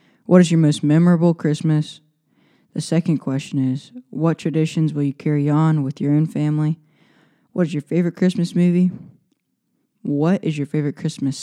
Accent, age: American, 20-39